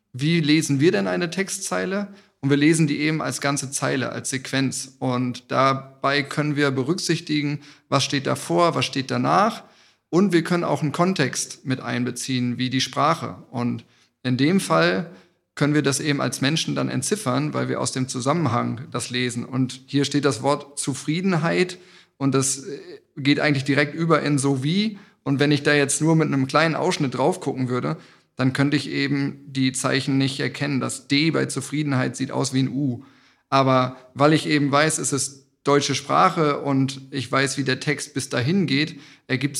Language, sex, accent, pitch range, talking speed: German, male, German, 130-150 Hz, 185 wpm